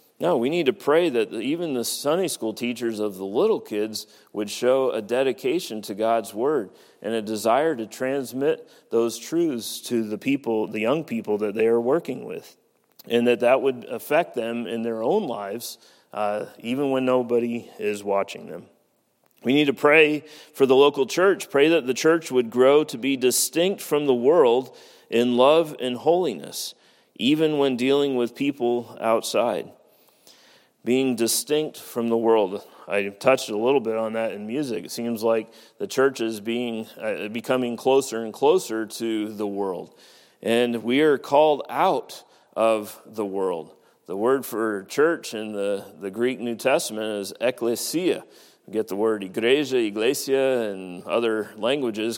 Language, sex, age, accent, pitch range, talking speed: English, male, 40-59, American, 110-135 Hz, 165 wpm